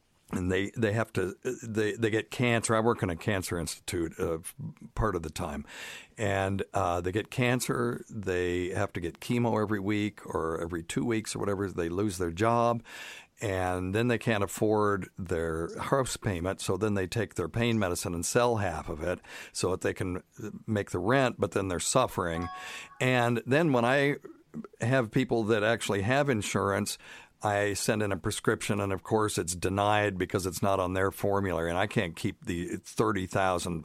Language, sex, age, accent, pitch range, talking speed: English, male, 60-79, American, 90-115 Hz, 190 wpm